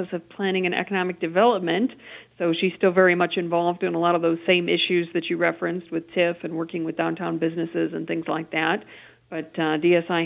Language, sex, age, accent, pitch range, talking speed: English, female, 50-69, American, 170-200 Hz, 205 wpm